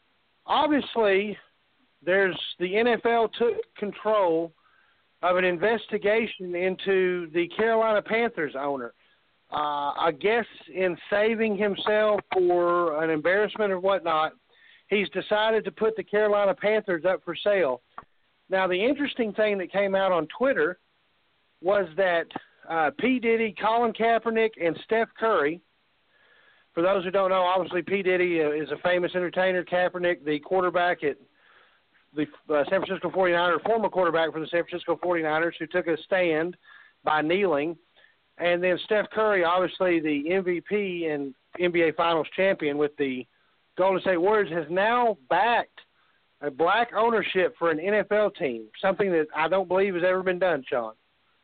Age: 50-69